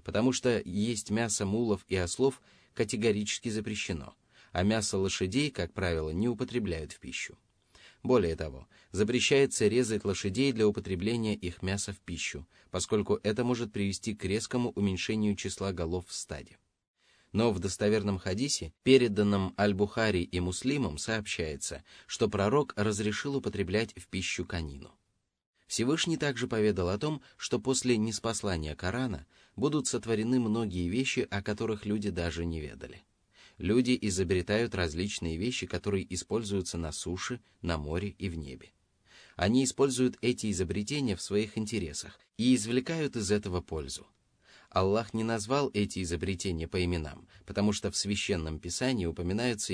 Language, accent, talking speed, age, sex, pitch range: Russian, native, 135 wpm, 20-39, male, 90-115 Hz